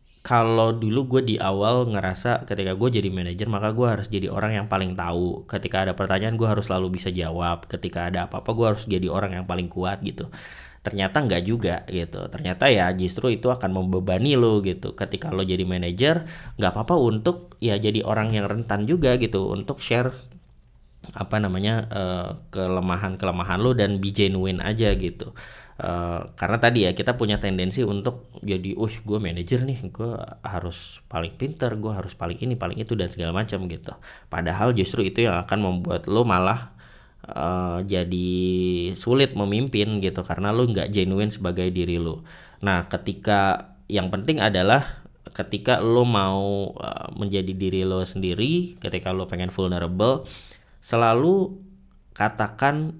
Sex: male